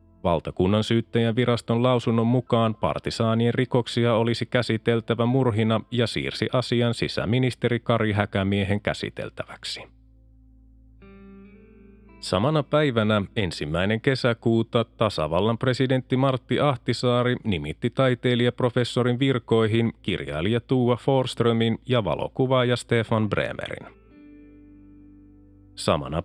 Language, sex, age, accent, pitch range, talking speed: Finnish, male, 30-49, native, 105-125 Hz, 80 wpm